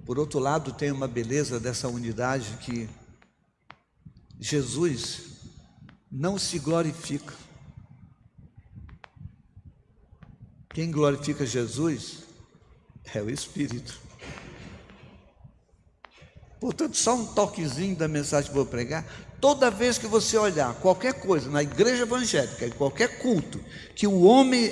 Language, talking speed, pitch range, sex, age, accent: Portuguese, 105 wpm, 140-210 Hz, male, 60-79, Brazilian